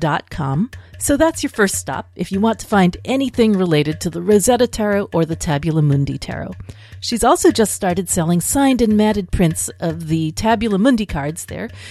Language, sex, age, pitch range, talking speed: English, female, 40-59, 150-240 Hz, 180 wpm